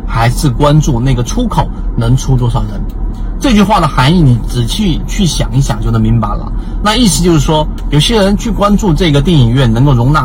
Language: Chinese